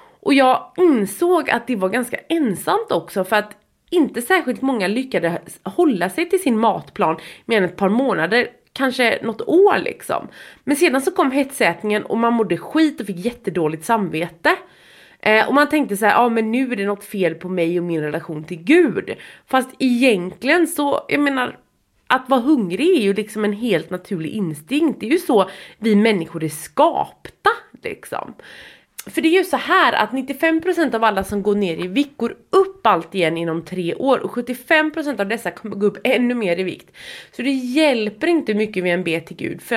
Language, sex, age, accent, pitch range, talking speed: English, female, 20-39, Swedish, 185-285 Hz, 195 wpm